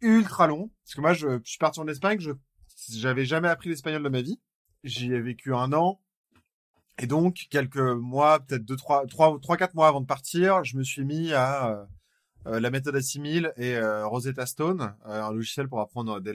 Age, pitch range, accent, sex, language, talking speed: 20-39, 110-155 Hz, French, male, French, 200 wpm